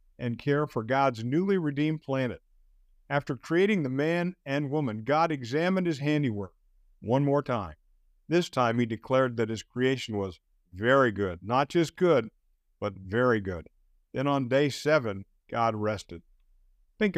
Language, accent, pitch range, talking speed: English, American, 110-150 Hz, 150 wpm